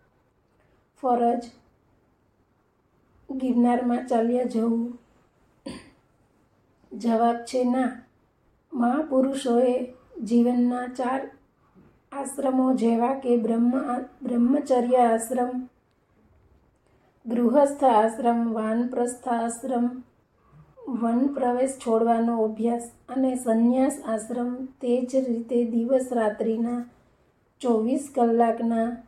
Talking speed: 70 wpm